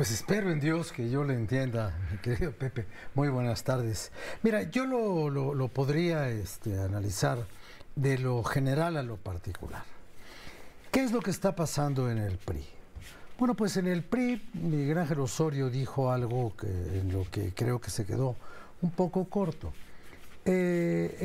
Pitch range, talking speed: 105-150 Hz, 170 wpm